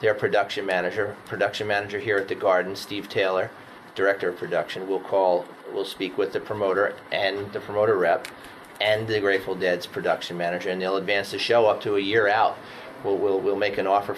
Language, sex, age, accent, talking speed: English, male, 30-49, American, 200 wpm